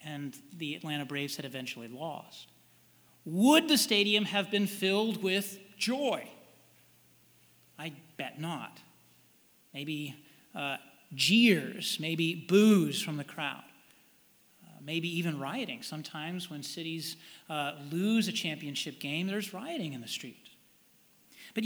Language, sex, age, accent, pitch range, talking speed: English, male, 40-59, American, 160-220 Hz, 120 wpm